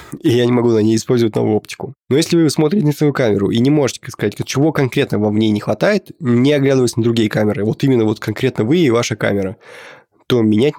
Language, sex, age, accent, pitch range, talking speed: Russian, male, 20-39, native, 110-145 Hz, 235 wpm